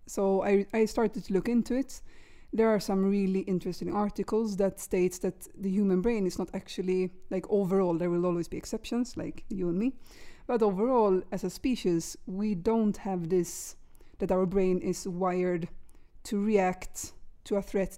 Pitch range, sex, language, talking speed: 180-215 Hz, female, English, 175 wpm